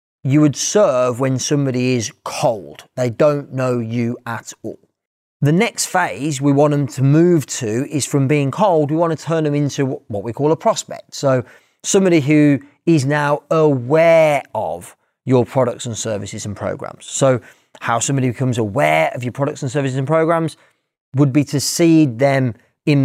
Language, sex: English, male